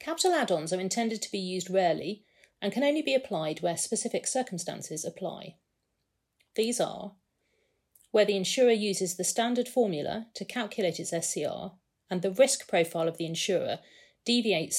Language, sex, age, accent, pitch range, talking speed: English, female, 40-59, British, 170-215 Hz, 155 wpm